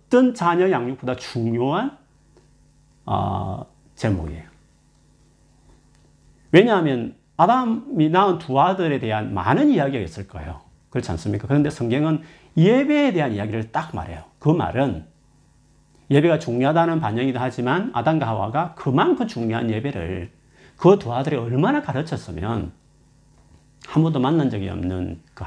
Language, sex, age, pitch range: Korean, male, 40-59, 105-160 Hz